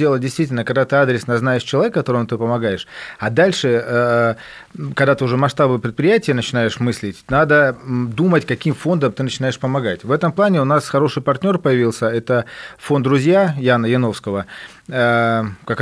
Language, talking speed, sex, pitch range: Russian, 150 wpm, male, 120-140 Hz